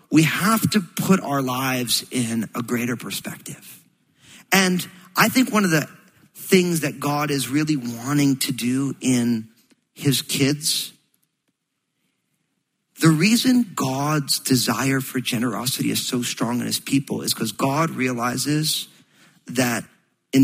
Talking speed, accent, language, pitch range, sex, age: 130 wpm, American, English, 120-155 Hz, male, 40-59